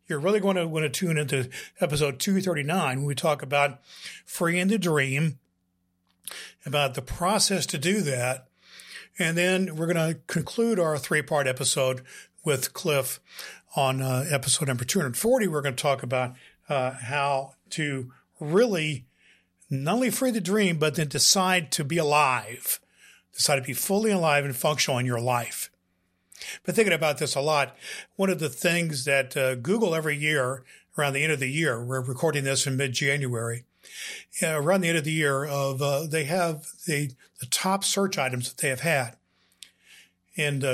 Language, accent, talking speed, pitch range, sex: English, American, 175 wpm, 130-170 Hz, male